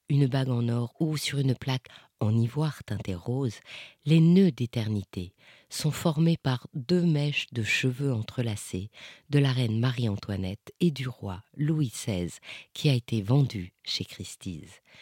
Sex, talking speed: female, 150 wpm